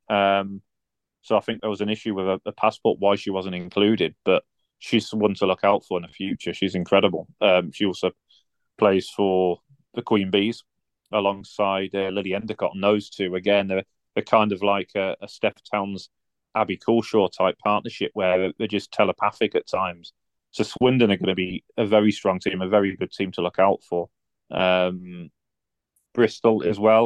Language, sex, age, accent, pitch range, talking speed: English, male, 30-49, British, 95-110 Hz, 185 wpm